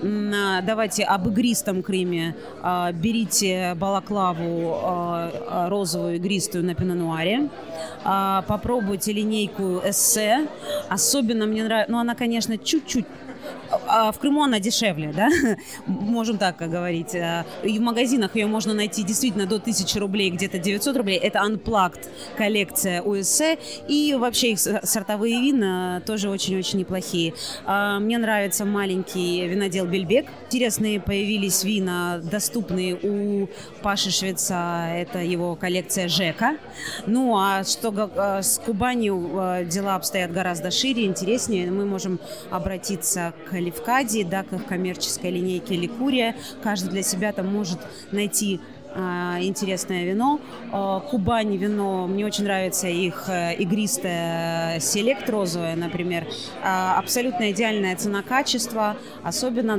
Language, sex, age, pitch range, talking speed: Russian, female, 30-49, 185-220 Hz, 115 wpm